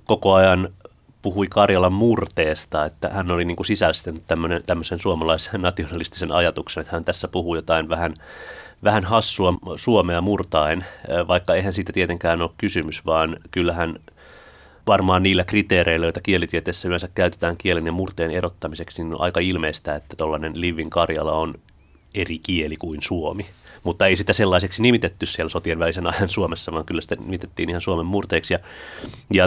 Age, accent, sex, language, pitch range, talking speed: 30-49, native, male, Finnish, 85-100 Hz, 155 wpm